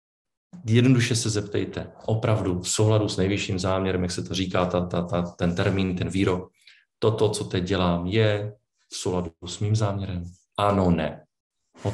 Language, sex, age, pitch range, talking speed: Czech, male, 40-59, 90-110 Hz, 165 wpm